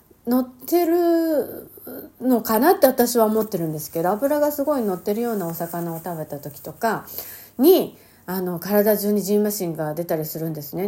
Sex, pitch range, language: female, 165-255 Hz, Japanese